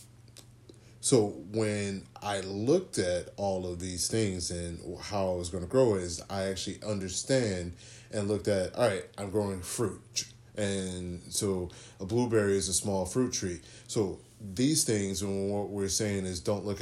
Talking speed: 170 wpm